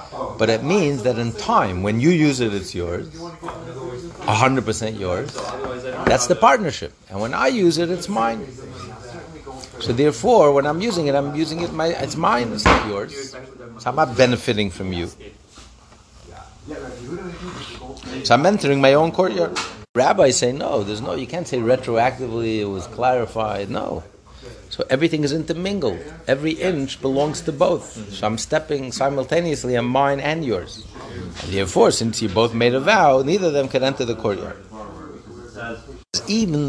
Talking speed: 160 wpm